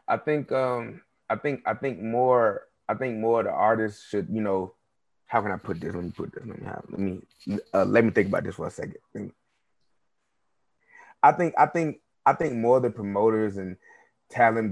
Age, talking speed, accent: 20-39, 195 wpm, American